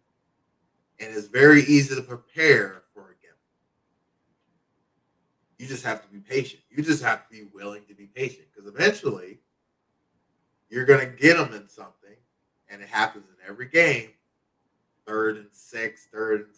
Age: 20-39